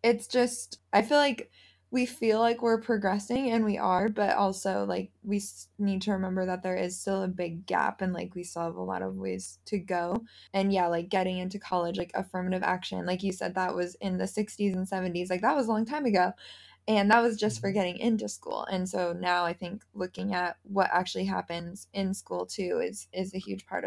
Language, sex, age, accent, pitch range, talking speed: English, female, 20-39, American, 185-215 Hz, 225 wpm